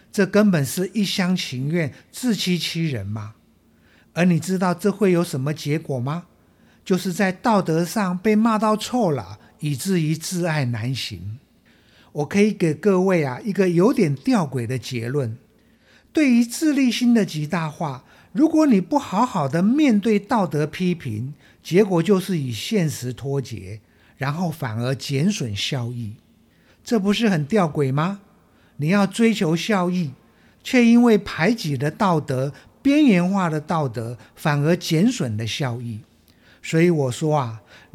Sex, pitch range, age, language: male, 145-225 Hz, 50-69, Chinese